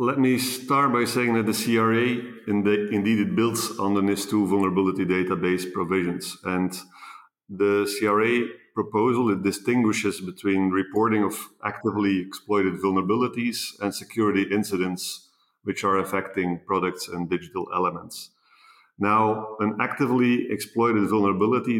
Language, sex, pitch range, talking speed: English, male, 95-110 Hz, 120 wpm